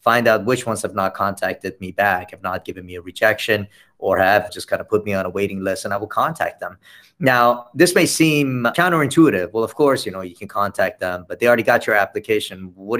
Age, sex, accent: 30-49, male, American